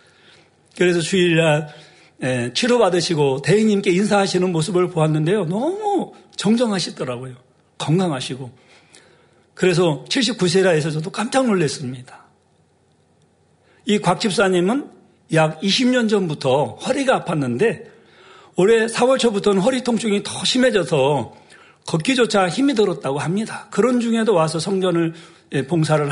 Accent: native